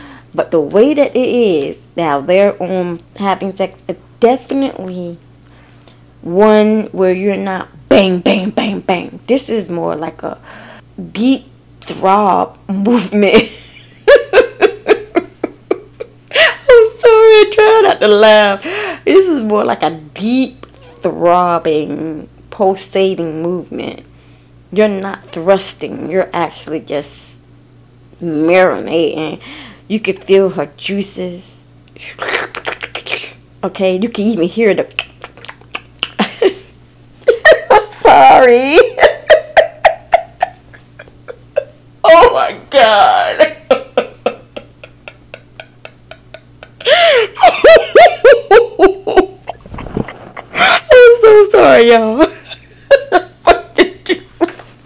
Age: 20-39